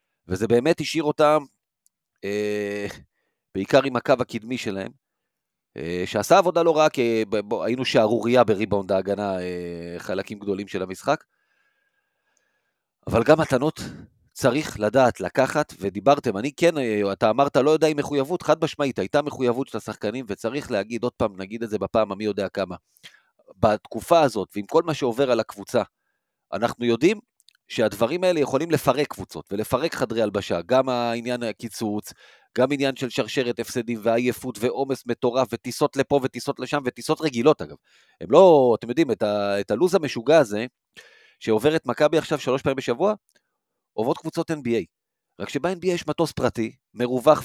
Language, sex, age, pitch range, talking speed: Hebrew, male, 40-59, 110-145 Hz, 145 wpm